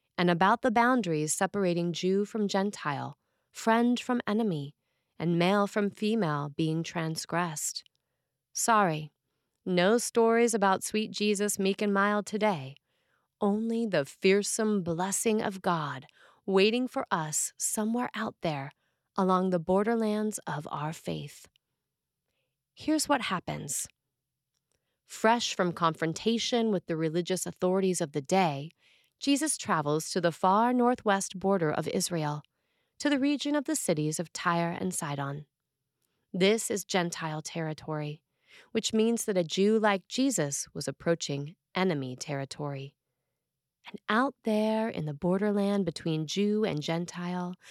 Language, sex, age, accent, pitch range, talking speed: English, female, 30-49, American, 155-215 Hz, 130 wpm